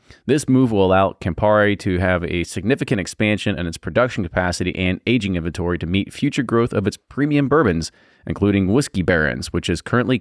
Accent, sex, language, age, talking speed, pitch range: American, male, English, 30-49, 180 wpm, 95-120 Hz